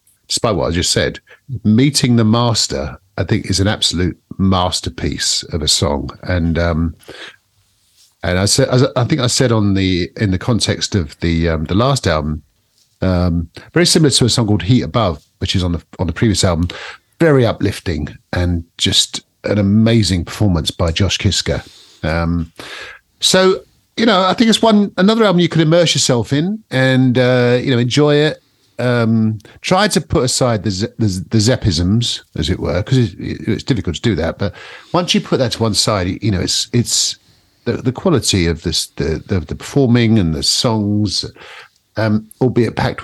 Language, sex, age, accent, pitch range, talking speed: English, male, 50-69, British, 90-125 Hz, 185 wpm